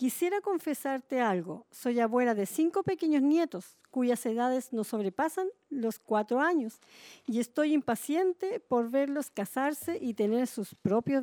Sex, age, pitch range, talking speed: female, 50-69, 215-295 Hz, 140 wpm